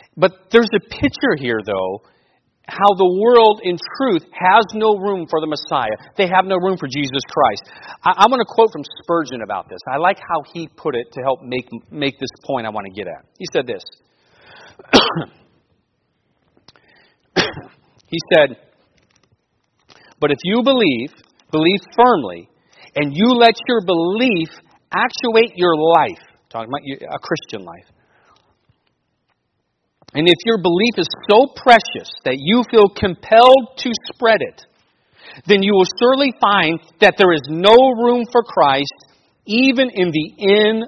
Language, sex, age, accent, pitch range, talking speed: English, male, 40-59, American, 145-225 Hz, 150 wpm